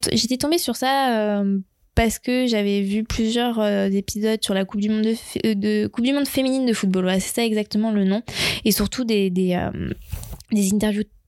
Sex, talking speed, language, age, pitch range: female, 190 wpm, French, 20-39, 200-235 Hz